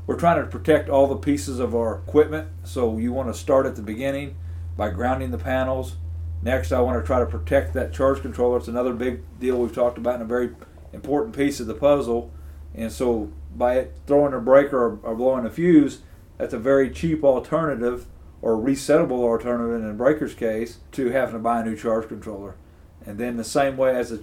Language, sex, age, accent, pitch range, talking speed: English, male, 40-59, American, 105-135 Hz, 210 wpm